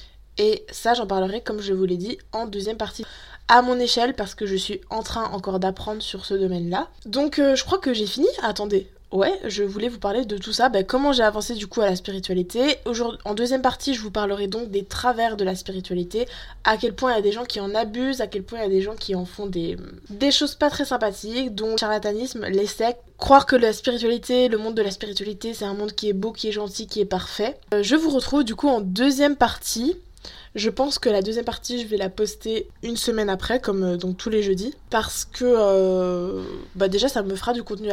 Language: French